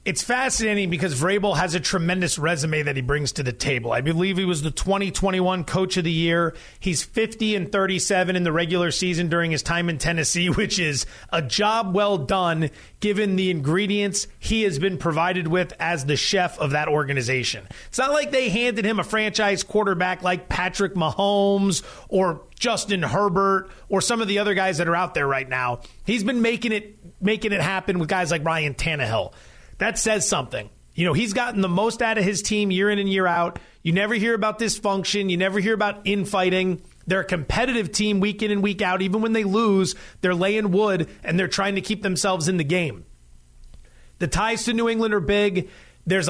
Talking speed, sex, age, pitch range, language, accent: 205 wpm, male, 30-49, 170-210 Hz, English, American